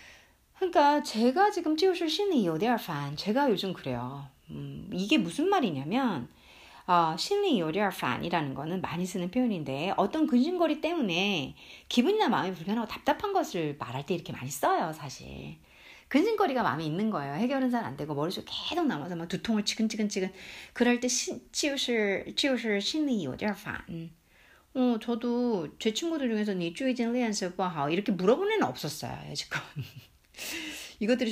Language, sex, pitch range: Korean, female, 175-270 Hz